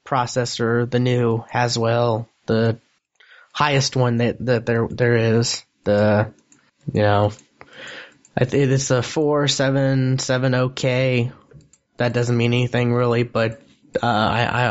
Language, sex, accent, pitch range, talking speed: English, male, American, 115-130 Hz, 135 wpm